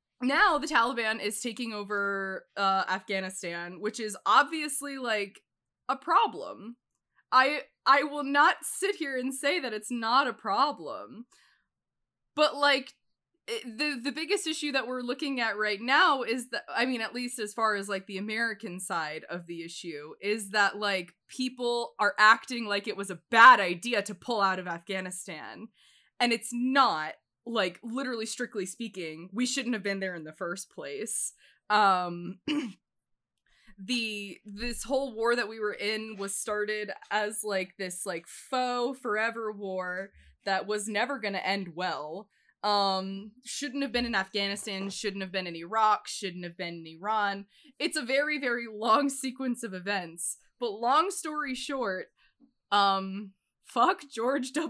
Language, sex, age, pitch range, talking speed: English, female, 20-39, 195-255 Hz, 160 wpm